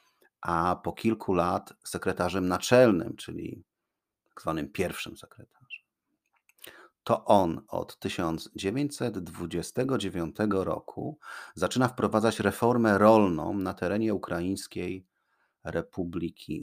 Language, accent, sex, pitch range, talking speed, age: Polish, native, male, 95-125 Hz, 85 wpm, 40-59